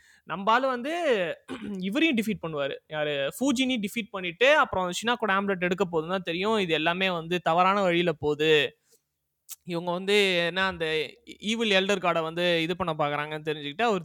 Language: Tamil